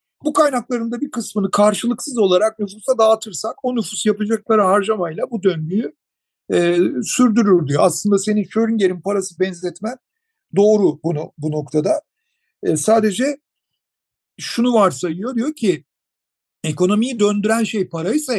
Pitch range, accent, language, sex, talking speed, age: 165-235 Hz, native, Turkish, male, 120 wpm, 50-69